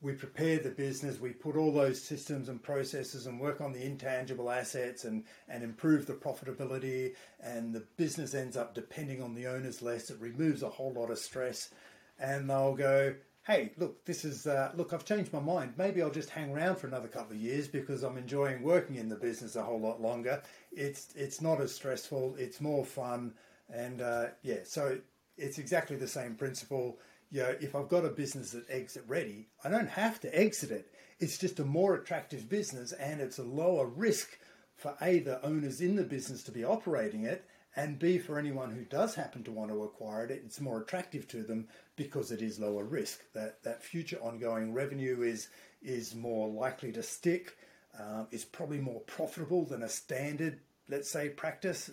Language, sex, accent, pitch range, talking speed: English, male, Australian, 120-150 Hz, 200 wpm